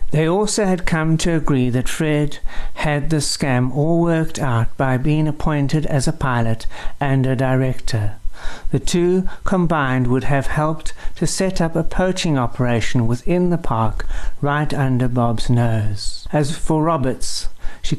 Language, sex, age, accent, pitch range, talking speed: English, male, 60-79, British, 125-160 Hz, 155 wpm